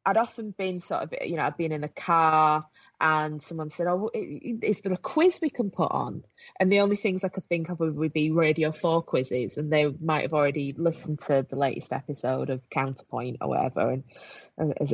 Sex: female